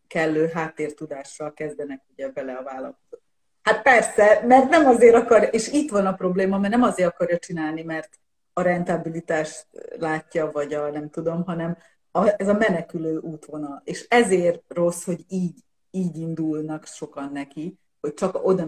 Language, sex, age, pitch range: Hungarian, female, 30-49, 150-195 Hz